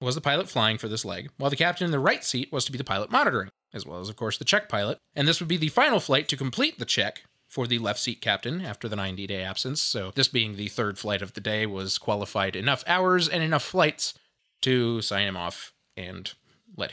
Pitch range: 115-185 Hz